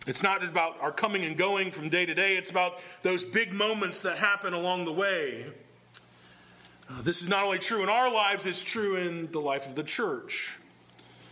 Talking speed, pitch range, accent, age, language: 200 wpm, 115-195 Hz, American, 40-59, English